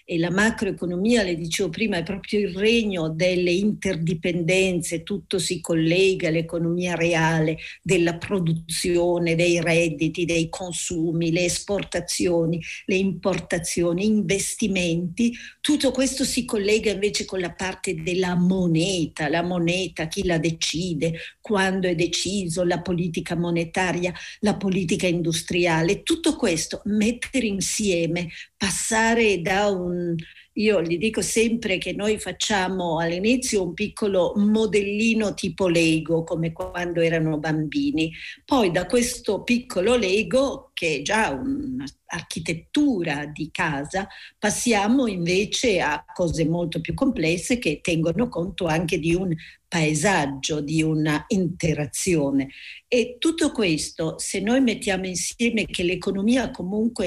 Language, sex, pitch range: Italian, female, 170-210 Hz